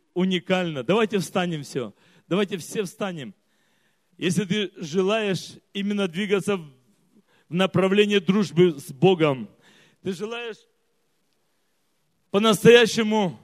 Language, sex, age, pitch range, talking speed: Russian, male, 40-59, 195-245 Hz, 90 wpm